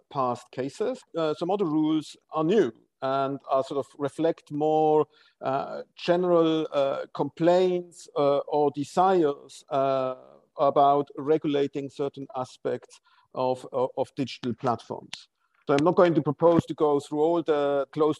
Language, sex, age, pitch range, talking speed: English, male, 50-69, 145-180 Hz, 140 wpm